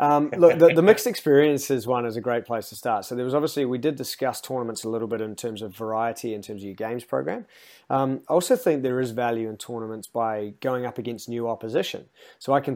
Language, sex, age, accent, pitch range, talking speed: English, male, 30-49, Australian, 110-135 Hz, 245 wpm